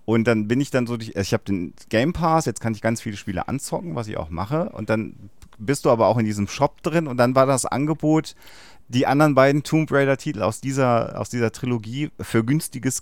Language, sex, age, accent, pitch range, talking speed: German, male, 40-59, German, 105-135 Hz, 230 wpm